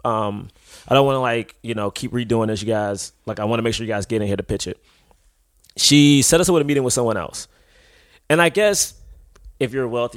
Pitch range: 110-135 Hz